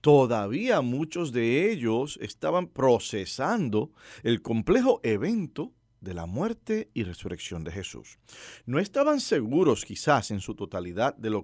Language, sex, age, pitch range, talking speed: English, male, 40-59, 100-140 Hz, 130 wpm